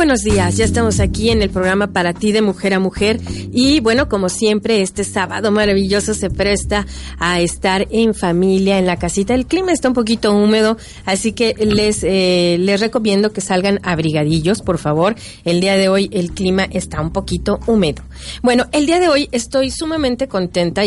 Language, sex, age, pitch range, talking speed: Spanish, female, 40-59, 190-225 Hz, 185 wpm